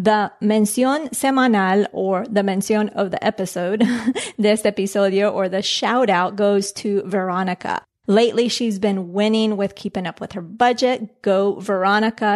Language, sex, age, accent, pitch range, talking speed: English, female, 30-49, American, 195-225 Hz, 145 wpm